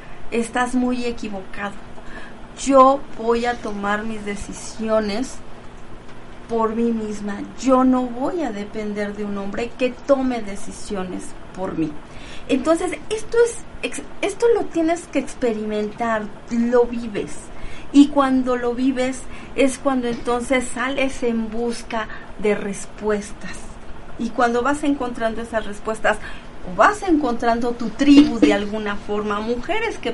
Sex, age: female, 40-59